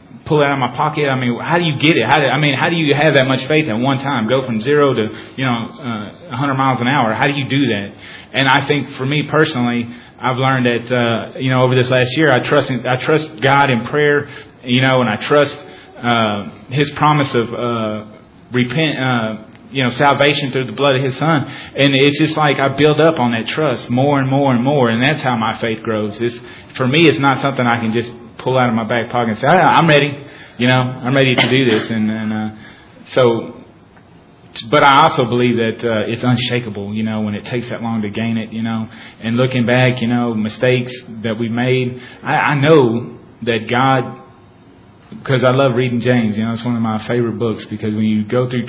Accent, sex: American, male